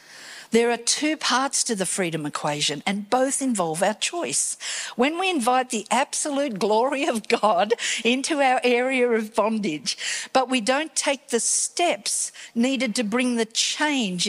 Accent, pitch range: Australian, 210-275 Hz